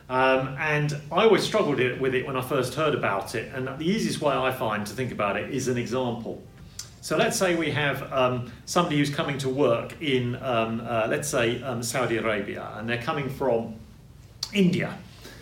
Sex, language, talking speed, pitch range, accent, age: male, English, 195 wpm, 115-145 Hz, British, 40-59